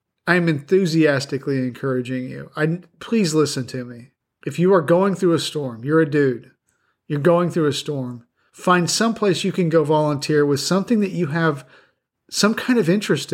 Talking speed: 180 wpm